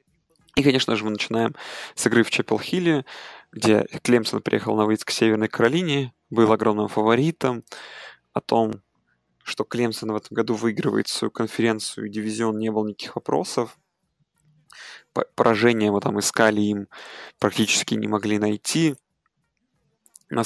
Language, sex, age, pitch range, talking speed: Russian, male, 20-39, 110-120 Hz, 135 wpm